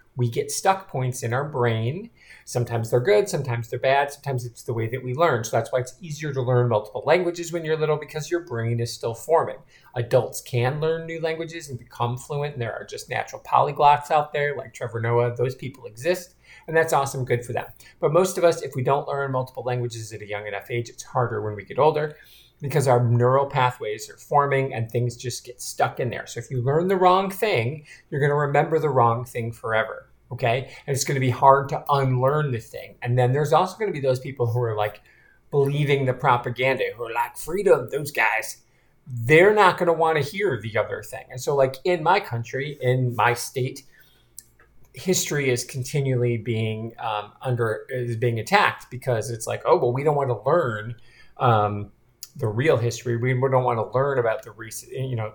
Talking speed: 215 wpm